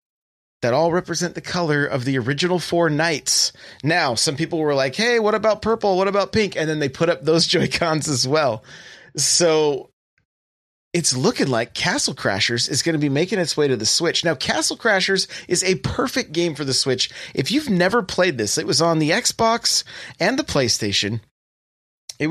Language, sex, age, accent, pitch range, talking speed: English, male, 30-49, American, 130-180 Hz, 190 wpm